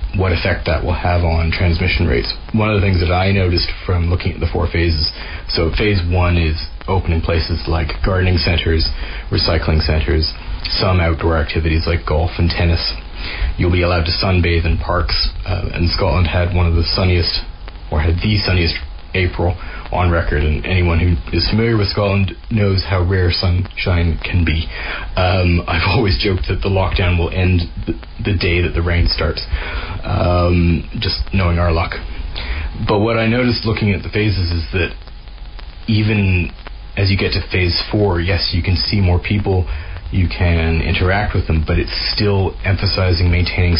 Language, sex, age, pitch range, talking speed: English, male, 30-49, 85-95 Hz, 175 wpm